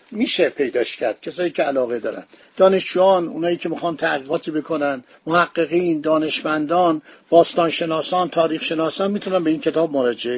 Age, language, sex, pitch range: 50-69, Persian, male, 165-195 Hz